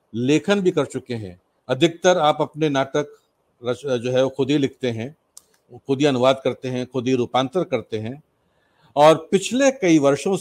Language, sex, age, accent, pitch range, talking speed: Hindi, male, 50-69, native, 130-160 Hz, 175 wpm